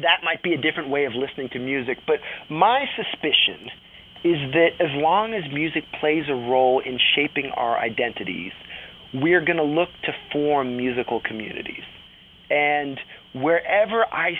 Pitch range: 140-180 Hz